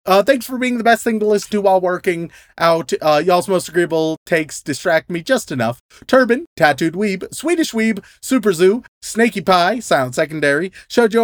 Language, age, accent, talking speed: English, 30-49, American, 180 wpm